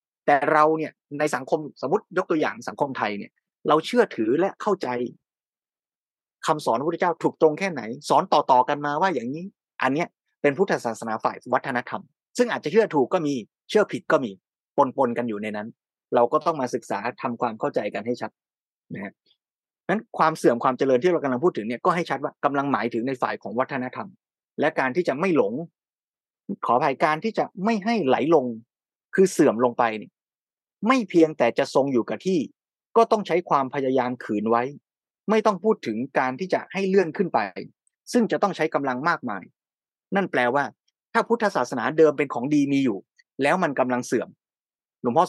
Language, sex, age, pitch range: Thai, male, 20-39, 125-195 Hz